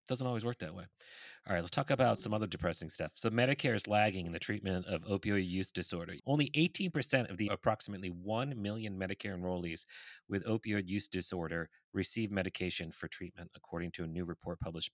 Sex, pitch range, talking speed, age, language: male, 90-110 Hz, 195 wpm, 30-49, English